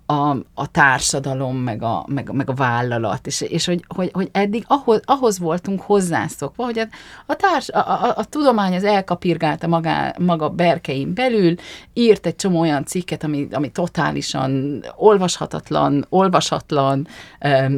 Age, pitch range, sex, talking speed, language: 40-59, 150-210 Hz, female, 135 wpm, Hungarian